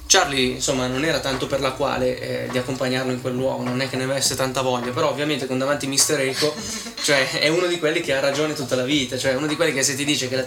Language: Italian